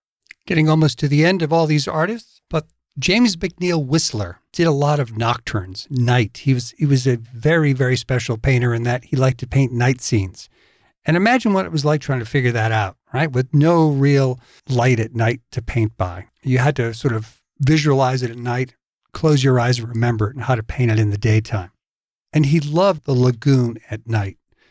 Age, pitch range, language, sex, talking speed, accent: 50-69, 120-155 Hz, English, male, 210 wpm, American